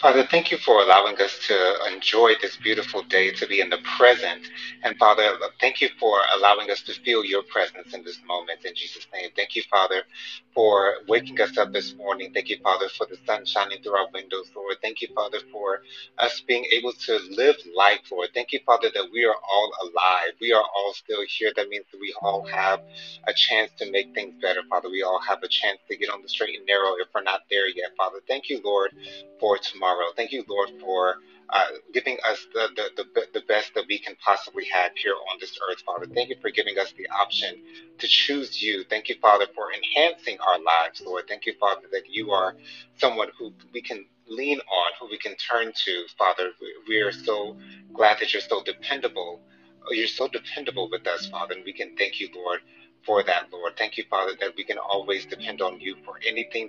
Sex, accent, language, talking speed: male, American, English, 220 wpm